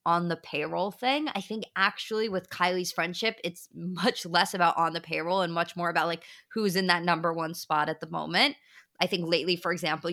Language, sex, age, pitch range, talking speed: English, female, 20-39, 175-230 Hz, 215 wpm